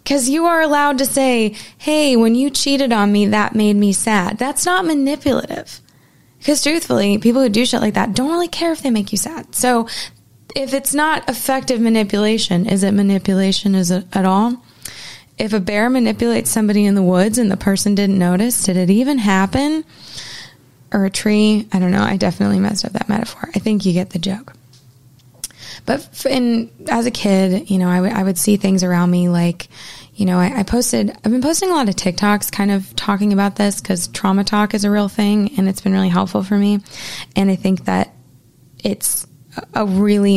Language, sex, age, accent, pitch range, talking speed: English, female, 20-39, American, 190-235 Hz, 205 wpm